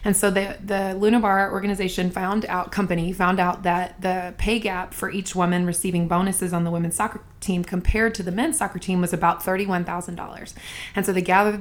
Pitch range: 180-205 Hz